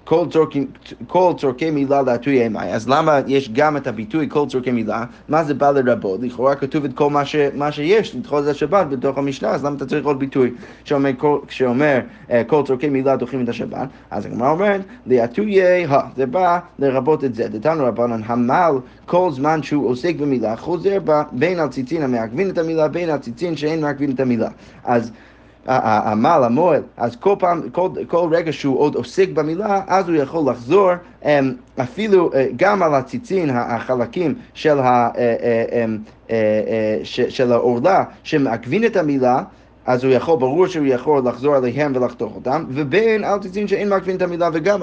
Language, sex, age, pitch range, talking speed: Hebrew, male, 30-49, 125-170 Hz, 150 wpm